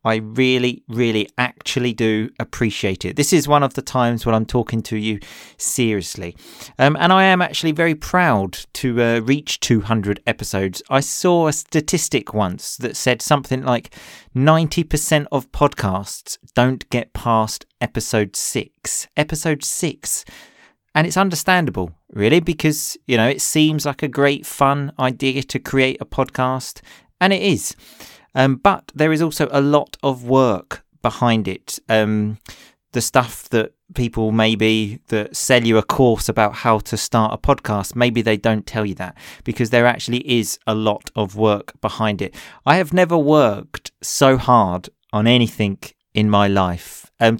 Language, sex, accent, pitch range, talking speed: English, male, British, 110-145 Hz, 160 wpm